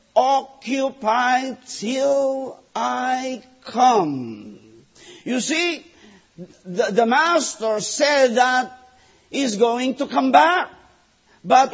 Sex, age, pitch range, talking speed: male, 50-69, 240-280 Hz, 85 wpm